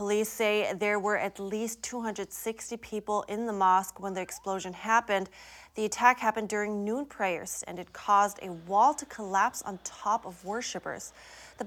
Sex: female